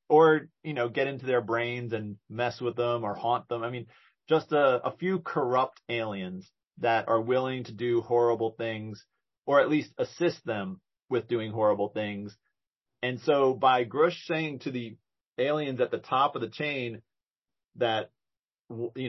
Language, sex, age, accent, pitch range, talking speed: English, male, 40-59, American, 120-155 Hz, 170 wpm